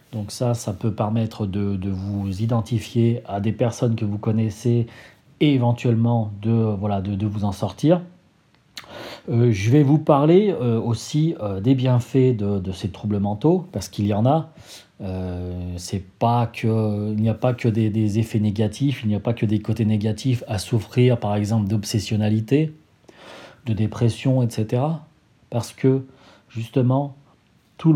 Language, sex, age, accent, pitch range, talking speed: French, male, 40-59, French, 105-130 Hz, 165 wpm